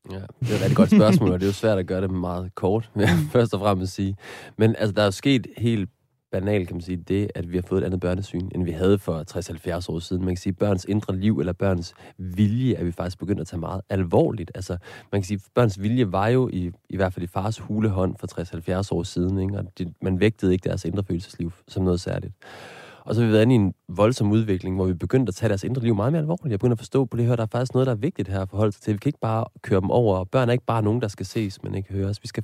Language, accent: Danish, native